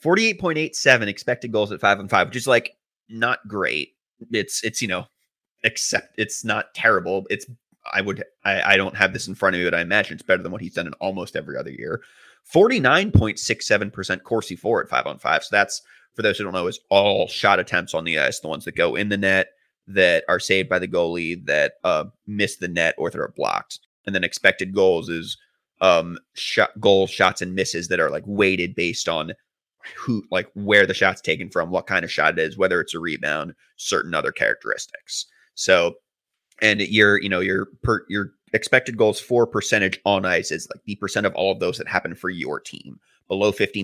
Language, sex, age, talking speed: English, male, 30-49, 220 wpm